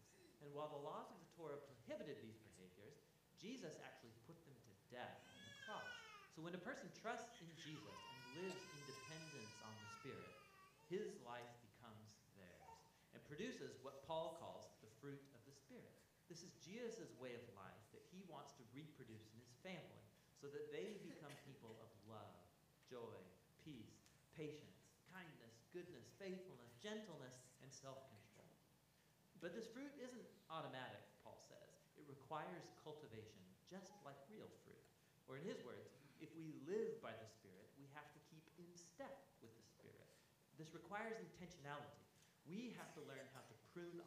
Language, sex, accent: English, male, American